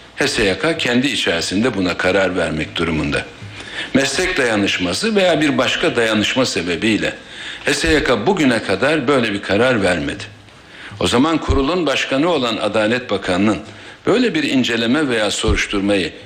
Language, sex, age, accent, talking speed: Turkish, male, 60-79, native, 120 wpm